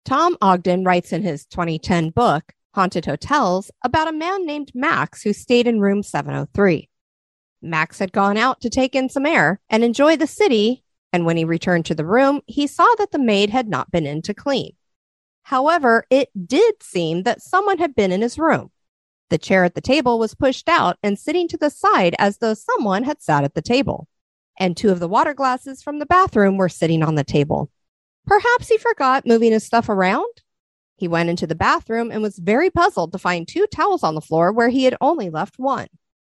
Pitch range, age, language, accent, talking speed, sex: 185-295 Hz, 40-59, English, American, 205 wpm, female